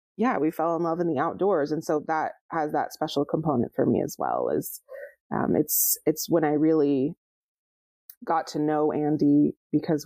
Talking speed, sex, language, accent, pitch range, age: 185 wpm, female, English, American, 150-180 Hz, 20-39